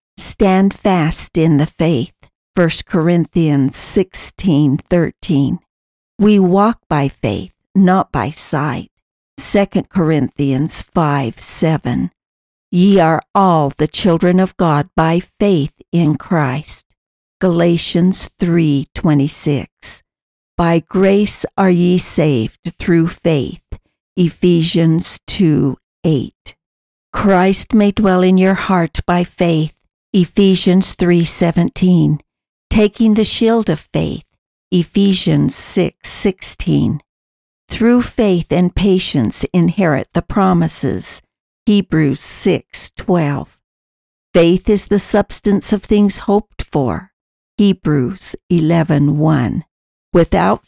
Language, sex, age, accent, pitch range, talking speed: English, female, 60-79, American, 150-190 Hz, 95 wpm